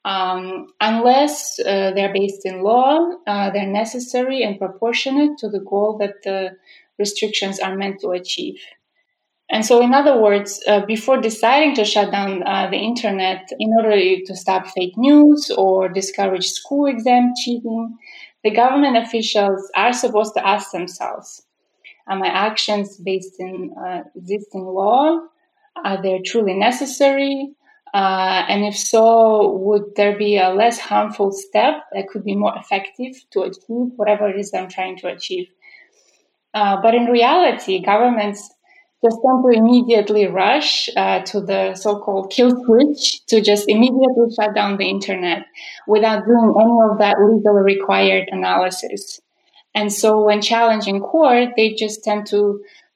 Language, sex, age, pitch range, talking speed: English, female, 20-39, 195-245 Hz, 150 wpm